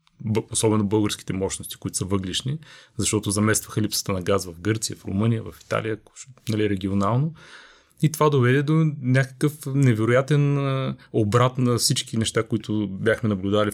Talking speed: 145 wpm